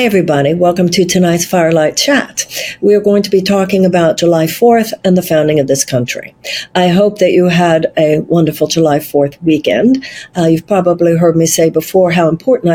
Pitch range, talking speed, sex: 160-205 Hz, 185 wpm, female